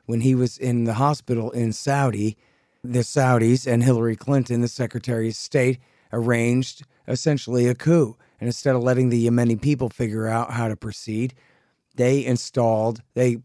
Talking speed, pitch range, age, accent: 160 wpm, 115-140 Hz, 40-59, American